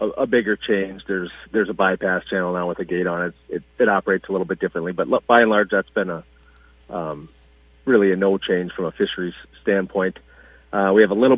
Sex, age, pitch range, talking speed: male, 40-59, 85-110 Hz, 230 wpm